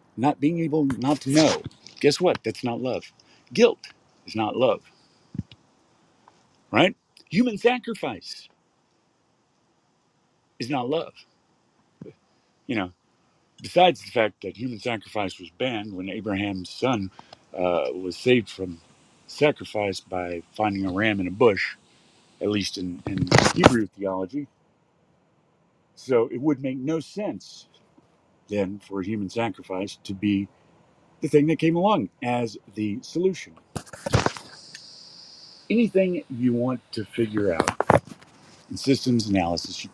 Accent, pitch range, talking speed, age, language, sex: American, 100-155 Hz, 125 wpm, 50-69, English, male